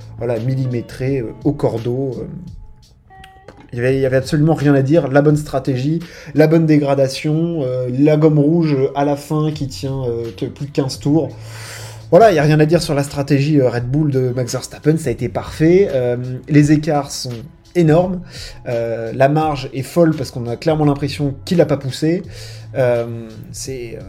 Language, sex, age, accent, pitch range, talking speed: French, male, 20-39, French, 125-160 Hz, 180 wpm